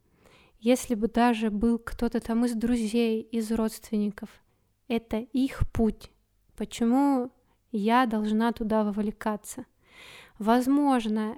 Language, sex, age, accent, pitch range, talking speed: Russian, female, 20-39, native, 220-255 Hz, 100 wpm